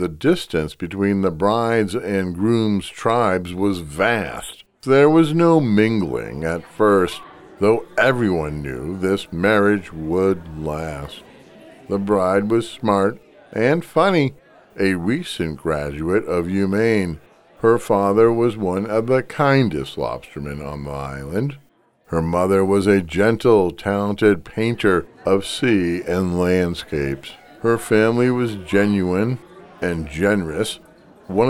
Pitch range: 85-115 Hz